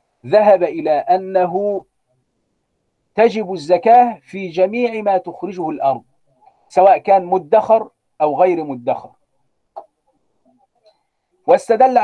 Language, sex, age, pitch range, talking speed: Arabic, male, 50-69, 160-225 Hz, 85 wpm